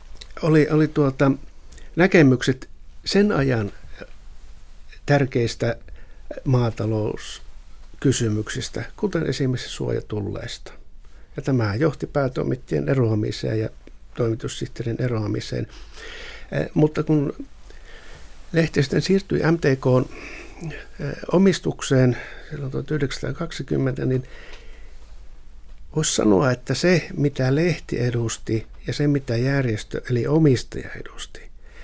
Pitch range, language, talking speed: 115-150 Hz, Finnish, 75 wpm